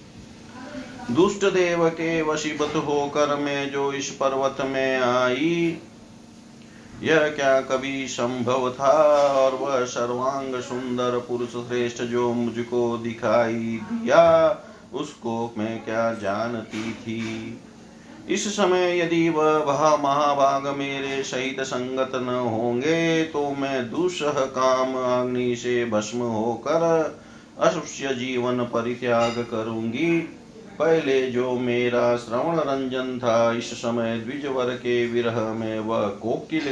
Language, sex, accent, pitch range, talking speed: Hindi, male, native, 120-145 Hz, 115 wpm